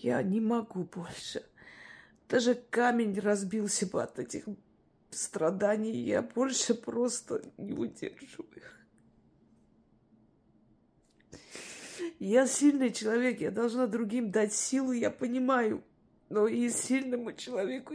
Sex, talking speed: female, 105 wpm